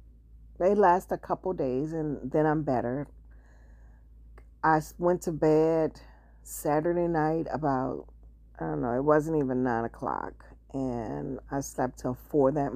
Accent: American